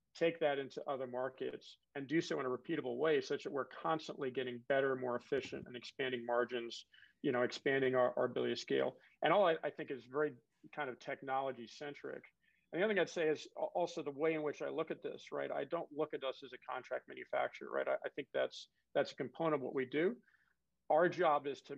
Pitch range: 130-150 Hz